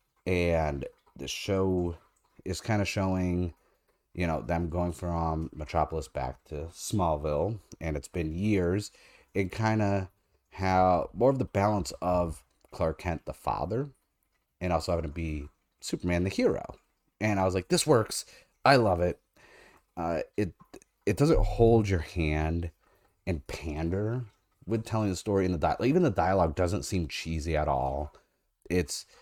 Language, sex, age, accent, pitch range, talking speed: English, male, 30-49, American, 80-105 Hz, 155 wpm